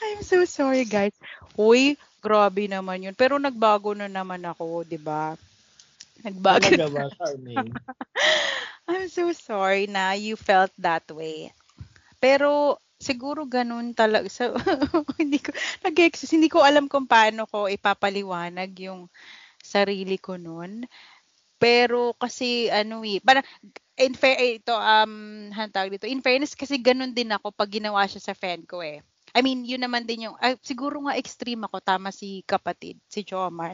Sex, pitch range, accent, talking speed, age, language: female, 190-260 Hz, native, 145 wpm, 20-39, Filipino